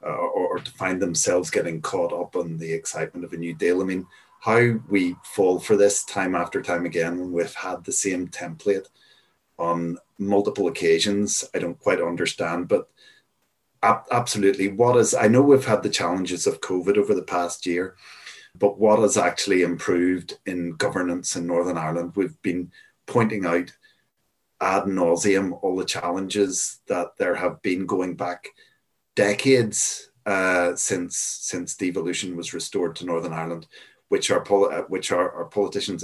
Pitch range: 85-100 Hz